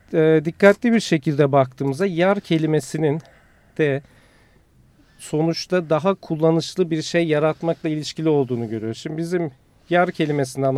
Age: 40-59